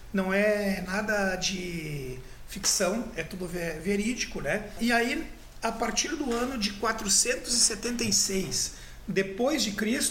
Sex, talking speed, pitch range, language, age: male, 100 wpm, 200-240 Hz, Portuguese, 50-69